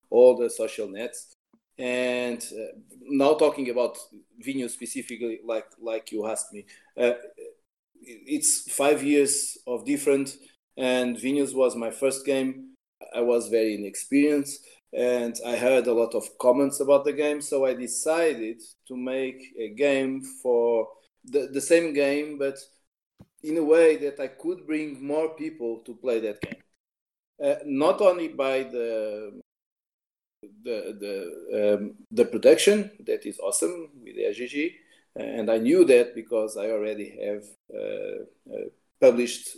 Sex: male